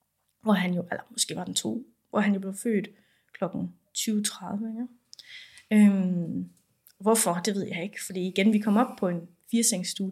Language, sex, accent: Danish, female, native